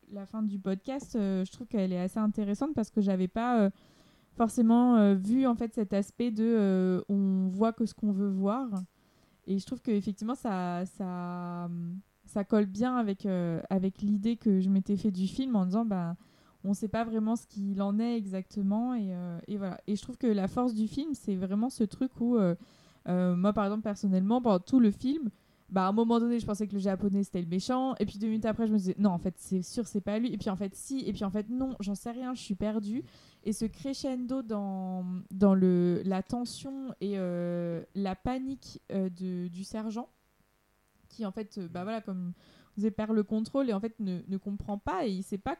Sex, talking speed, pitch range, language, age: female, 235 wpm, 190-235 Hz, French, 20-39